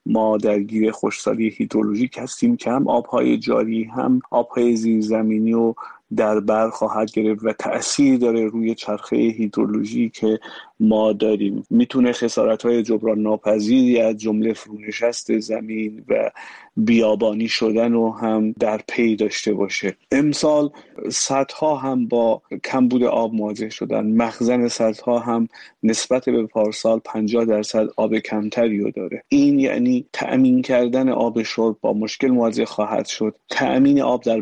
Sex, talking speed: male, 135 wpm